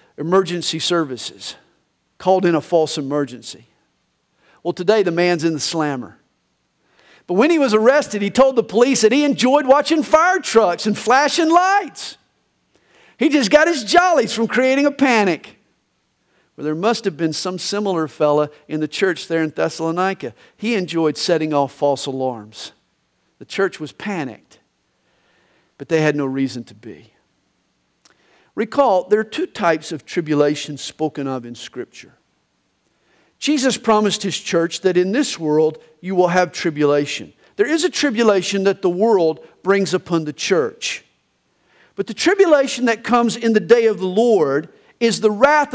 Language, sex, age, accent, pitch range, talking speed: English, male, 50-69, American, 160-245 Hz, 155 wpm